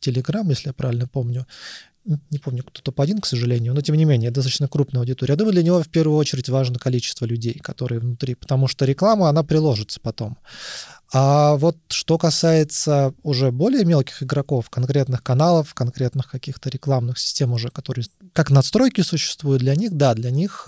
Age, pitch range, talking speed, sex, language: 20-39, 125-160 Hz, 175 wpm, male, Russian